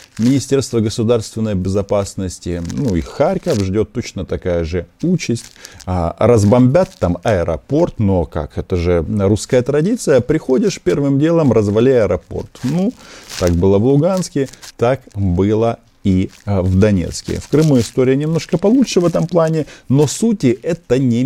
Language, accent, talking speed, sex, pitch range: Russian, native, 135 wpm, male, 95-140 Hz